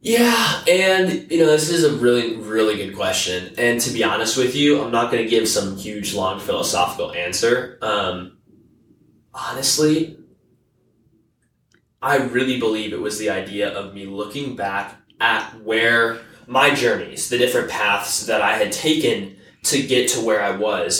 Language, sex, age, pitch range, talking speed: English, male, 10-29, 110-160 Hz, 165 wpm